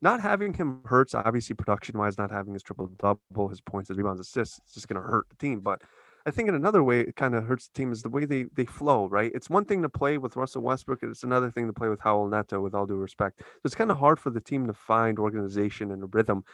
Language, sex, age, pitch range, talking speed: English, male, 20-39, 105-135 Hz, 275 wpm